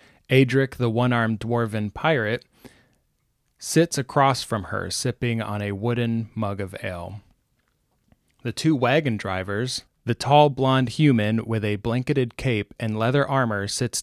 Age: 20-39